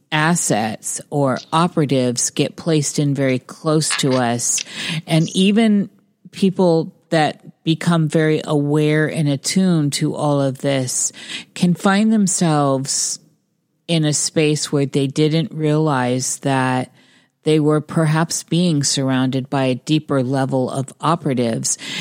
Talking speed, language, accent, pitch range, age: 125 wpm, English, American, 135-165 Hz, 40-59